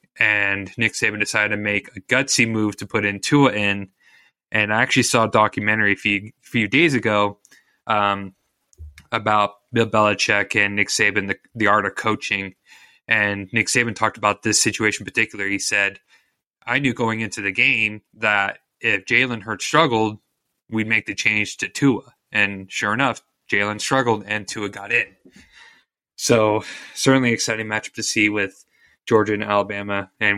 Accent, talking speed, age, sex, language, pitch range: American, 170 wpm, 20-39, male, English, 100-115 Hz